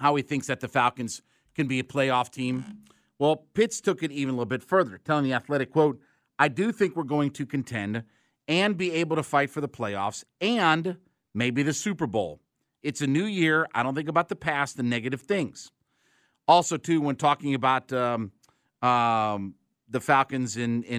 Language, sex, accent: English, male, American